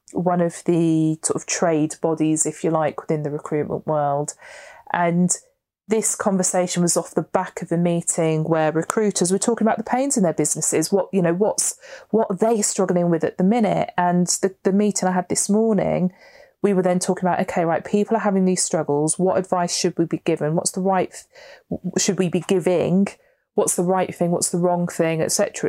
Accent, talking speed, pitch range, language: British, 205 wpm, 170-205 Hz, English